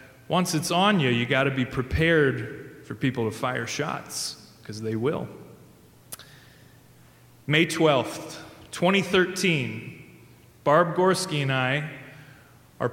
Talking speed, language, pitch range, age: 115 wpm, English, 120-155 Hz, 30-49